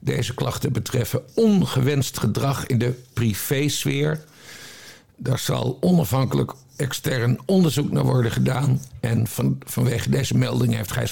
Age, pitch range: 60-79, 120-140 Hz